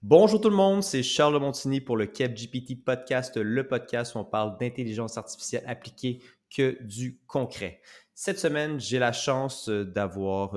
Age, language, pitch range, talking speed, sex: 30-49, French, 100-125 Hz, 170 wpm, male